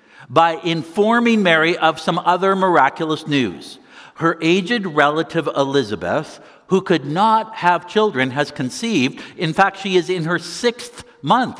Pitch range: 125-185 Hz